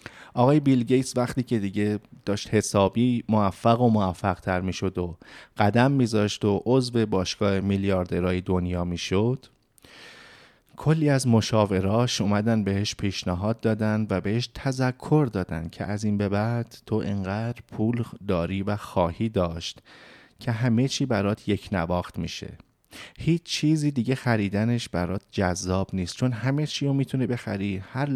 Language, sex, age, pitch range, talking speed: Persian, male, 30-49, 95-125 Hz, 140 wpm